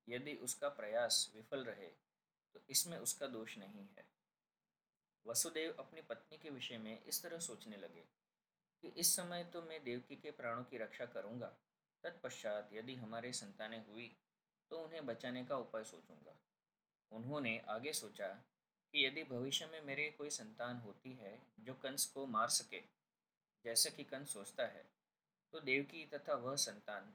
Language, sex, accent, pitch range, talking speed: Hindi, male, native, 115-145 Hz, 155 wpm